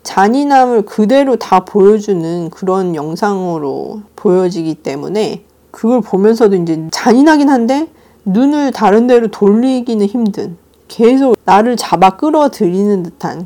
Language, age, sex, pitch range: Korean, 40-59, female, 170-225 Hz